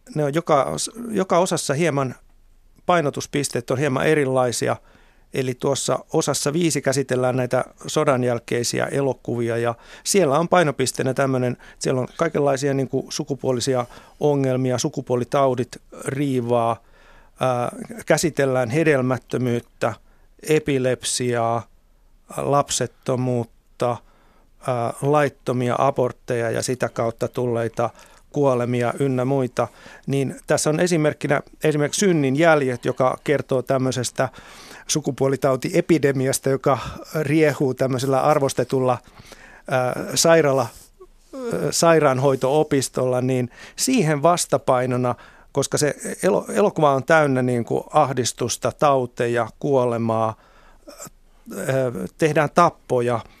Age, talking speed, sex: 50-69, 90 wpm, male